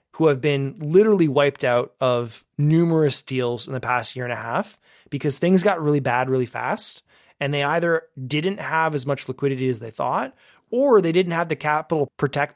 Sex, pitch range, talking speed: male, 130-160 Hz, 195 wpm